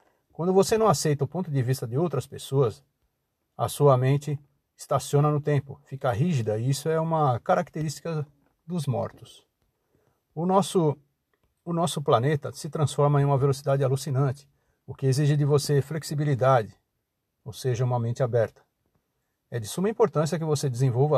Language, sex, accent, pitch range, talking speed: Portuguese, male, Brazilian, 130-150 Hz, 155 wpm